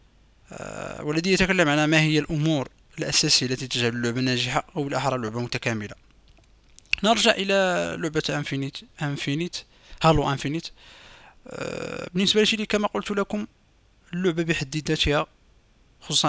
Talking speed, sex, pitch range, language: 115 wpm, male, 130-170 Hz, Arabic